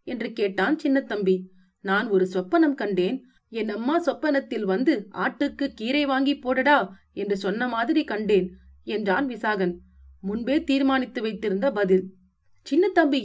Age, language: 30-49, Tamil